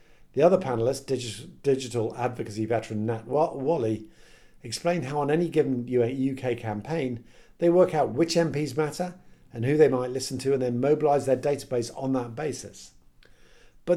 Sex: male